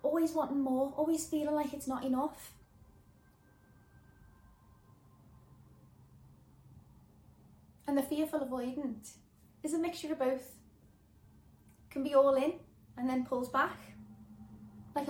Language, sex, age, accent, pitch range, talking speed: English, female, 20-39, British, 225-275 Hz, 105 wpm